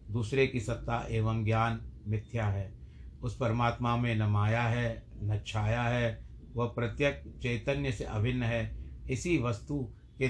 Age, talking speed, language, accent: 60-79, 140 wpm, Hindi, native